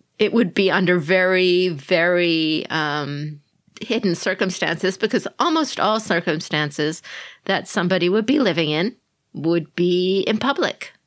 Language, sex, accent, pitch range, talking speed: English, female, American, 155-200 Hz, 125 wpm